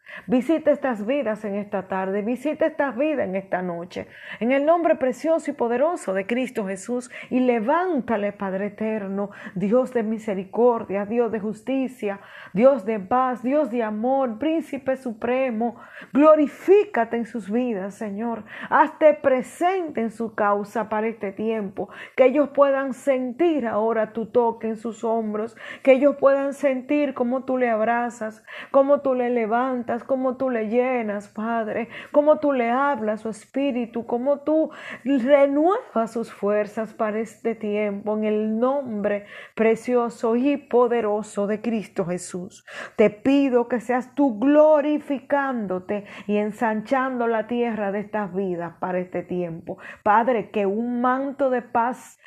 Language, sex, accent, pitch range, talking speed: Spanish, female, American, 215-270 Hz, 140 wpm